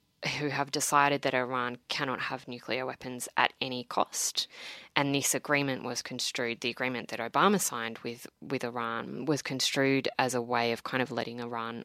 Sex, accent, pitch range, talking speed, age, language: female, Australian, 120-145 Hz, 175 wpm, 20-39, English